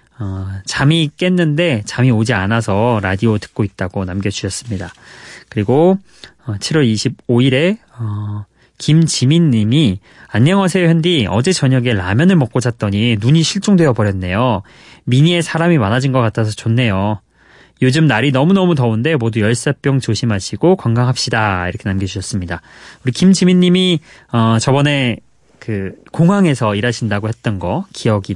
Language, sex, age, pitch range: Korean, male, 20-39, 105-145 Hz